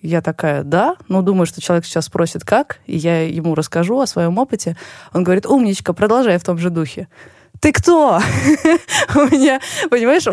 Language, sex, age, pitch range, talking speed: Russian, female, 20-39, 175-220 Hz, 185 wpm